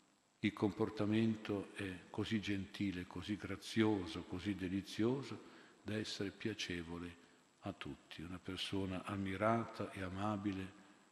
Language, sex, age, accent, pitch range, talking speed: Italian, male, 50-69, native, 90-105 Hz, 105 wpm